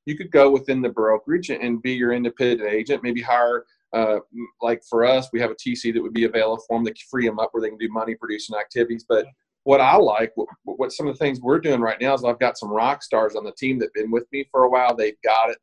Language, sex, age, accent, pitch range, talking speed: English, male, 40-59, American, 115-135 Hz, 275 wpm